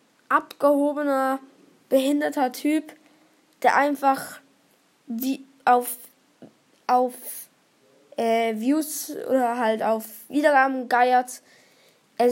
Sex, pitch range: female, 250-295 Hz